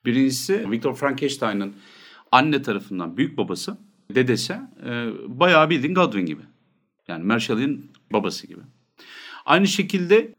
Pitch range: 110-145 Hz